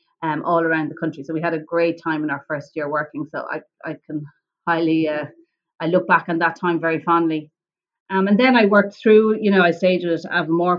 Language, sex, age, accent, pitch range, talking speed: English, female, 30-49, Irish, 155-175 Hz, 235 wpm